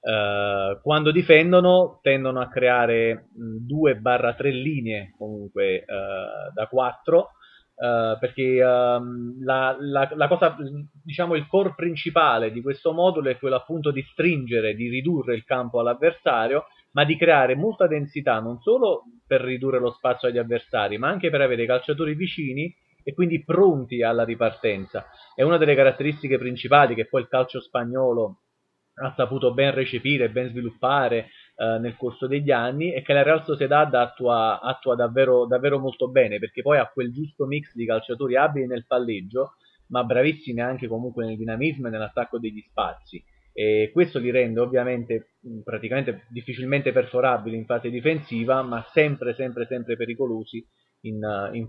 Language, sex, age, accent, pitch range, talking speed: Italian, male, 30-49, native, 120-145 Hz, 150 wpm